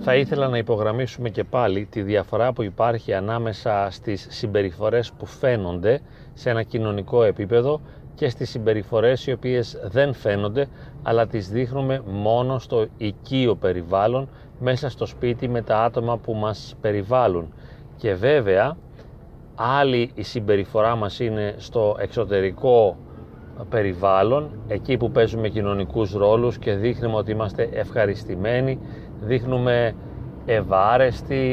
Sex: male